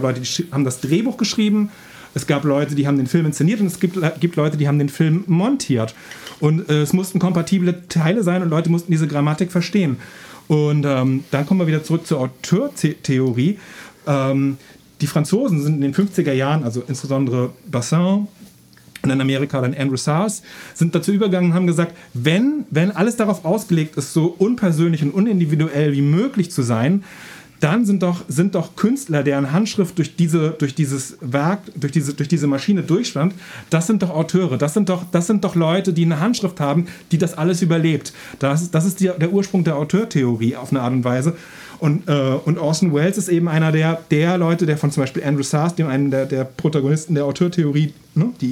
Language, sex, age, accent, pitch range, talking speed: German, male, 40-59, German, 140-180 Hz, 195 wpm